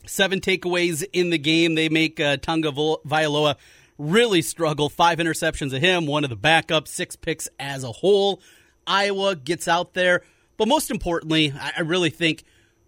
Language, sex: English, male